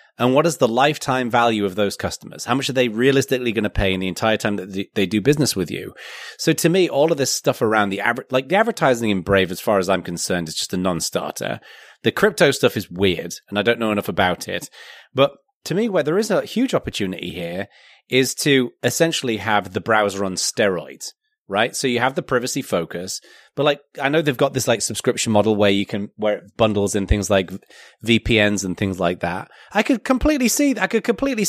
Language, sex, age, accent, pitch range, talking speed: English, male, 30-49, British, 105-145 Hz, 225 wpm